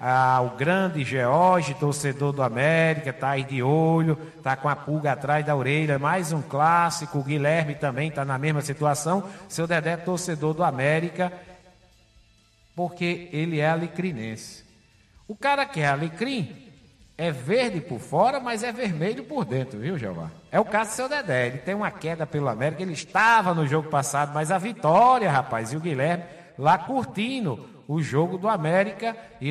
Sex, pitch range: male, 145-185 Hz